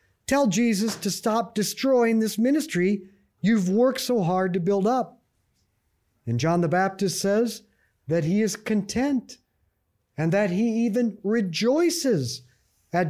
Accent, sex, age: American, male, 50-69